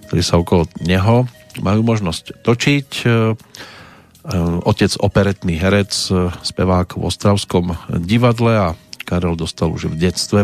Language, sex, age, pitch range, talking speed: Slovak, male, 40-59, 90-110 Hz, 115 wpm